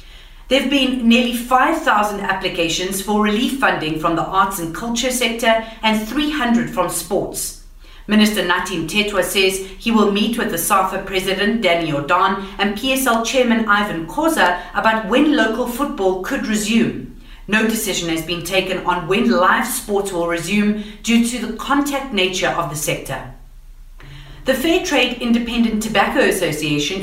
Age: 40-59